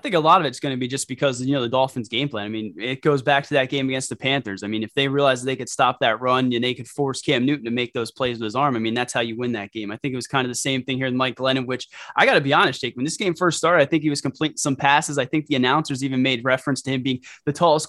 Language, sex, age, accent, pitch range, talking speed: English, male, 20-39, American, 125-150 Hz, 345 wpm